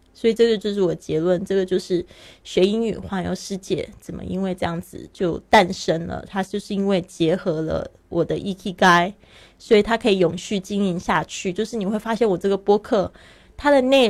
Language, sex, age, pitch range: Chinese, female, 20-39, 175-210 Hz